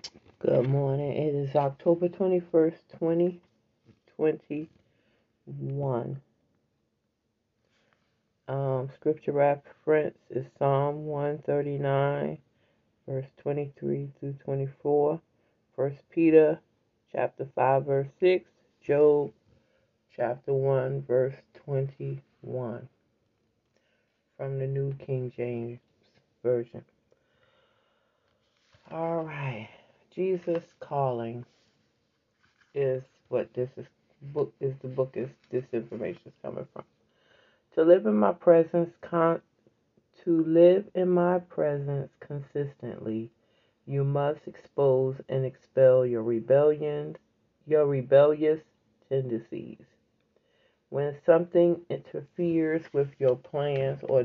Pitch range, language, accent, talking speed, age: 130-155 Hz, English, American, 85 wpm, 40-59